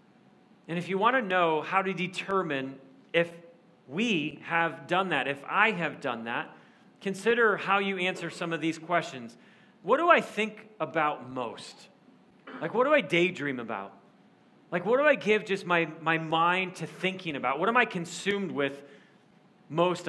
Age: 40-59